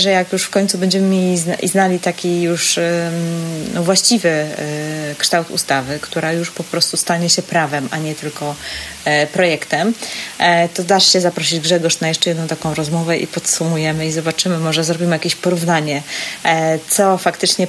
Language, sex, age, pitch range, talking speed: Polish, female, 30-49, 155-180 Hz, 150 wpm